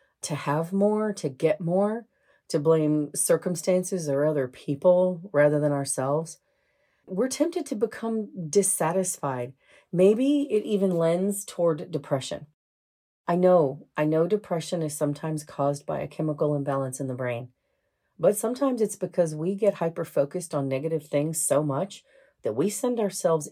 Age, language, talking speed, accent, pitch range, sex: 40-59, English, 145 wpm, American, 145-195 Hz, female